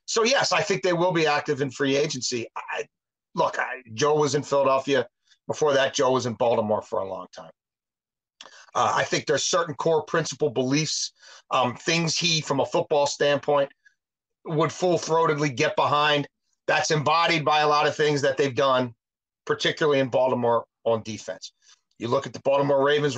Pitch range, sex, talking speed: 130-160 Hz, male, 170 wpm